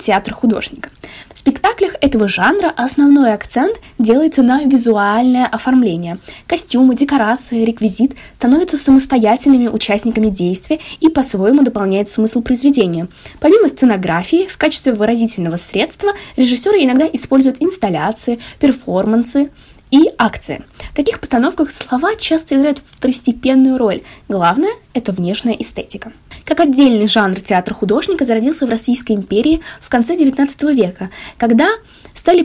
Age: 10-29